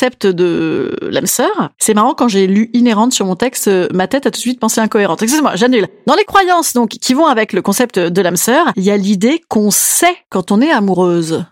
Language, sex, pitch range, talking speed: French, female, 210-325 Hz, 220 wpm